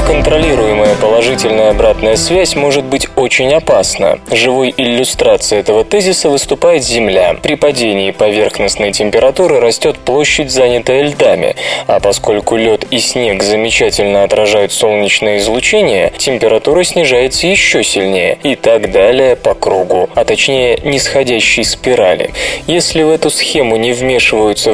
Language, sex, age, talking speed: Russian, male, 20-39, 120 wpm